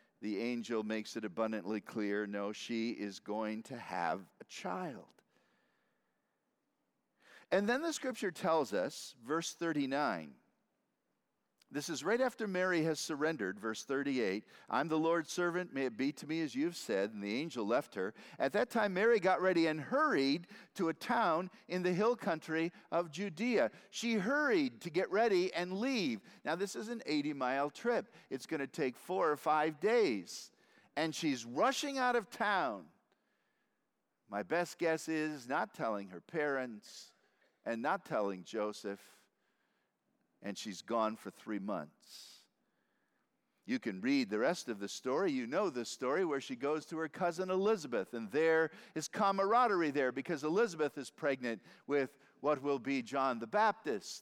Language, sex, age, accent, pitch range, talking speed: English, male, 50-69, American, 130-205 Hz, 160 wpm